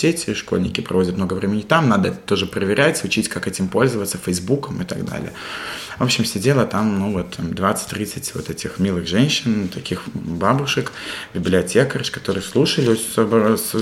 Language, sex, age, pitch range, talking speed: Russian, male, 20-39, 95-115 Hz, 145 wpm